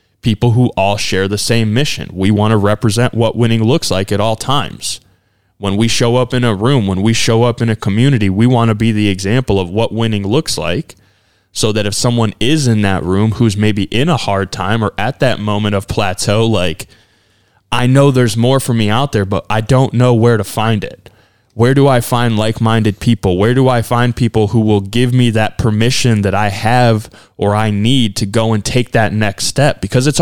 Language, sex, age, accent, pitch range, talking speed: English, male, 20-39, American, 105-125 Hz, 220 wpm